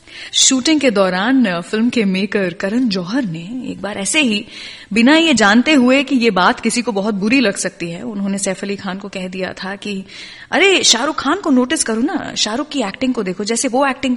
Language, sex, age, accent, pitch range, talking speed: Gujarati, female, 20-39, native, 190-260 Hz, 215 wpm